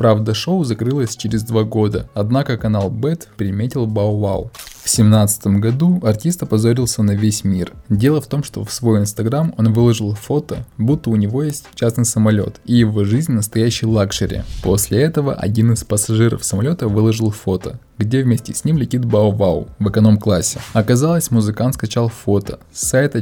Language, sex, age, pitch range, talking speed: Russian, male, 20-39, 105-120 Hz, 165 wpm